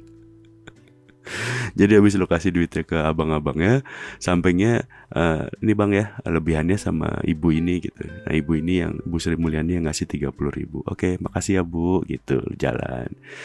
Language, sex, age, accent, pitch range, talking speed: Indonesian, male, 30-49, native, 80-110 Hz, 145 wpm